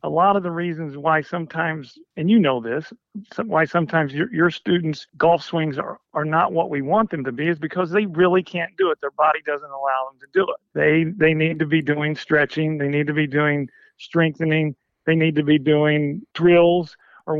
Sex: male